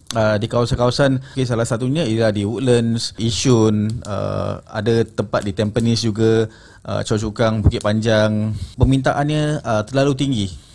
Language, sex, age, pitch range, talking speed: Malay, male, 30-49, 110-135 Hz, 140 wpm